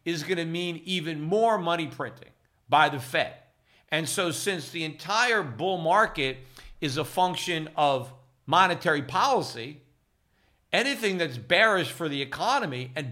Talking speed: 140 wpm